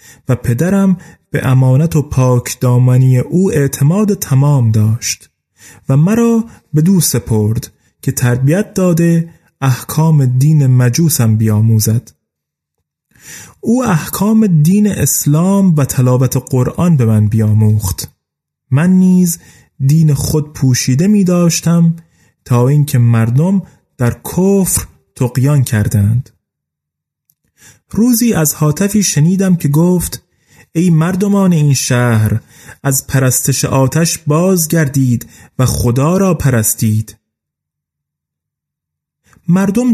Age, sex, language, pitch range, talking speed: 30-49, male, Persian, 125-170 Hz, 100 wpm